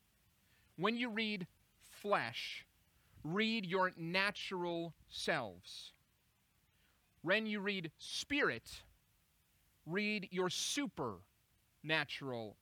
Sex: male